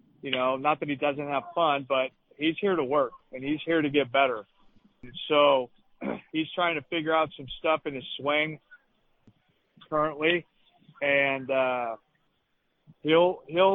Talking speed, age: 155 wpm, 40-59